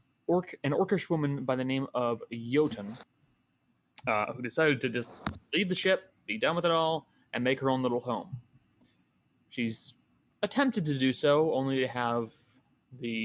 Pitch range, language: 120-155 Hz, English